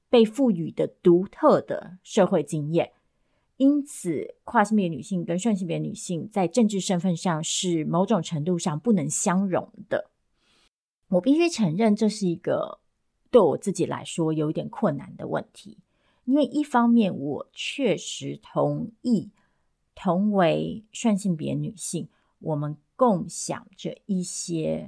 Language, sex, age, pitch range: Chinese, female, 30-49, 165-220 Hz